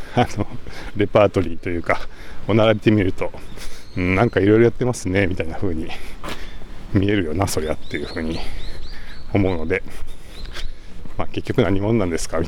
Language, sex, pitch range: Japanese, male, 85-105 Hz